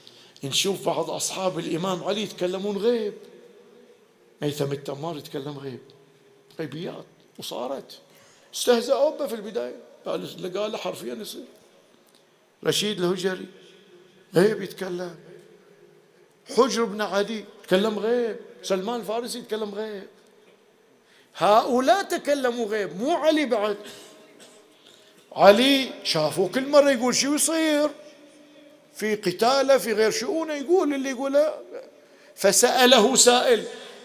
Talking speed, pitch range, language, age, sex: 100 wpm, 205-275 Hz, Arabic, 50-69, male